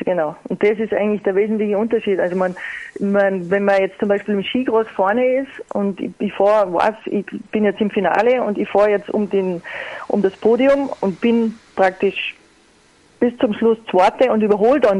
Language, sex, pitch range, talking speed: German, female, 200-245 Hz, 195 wpm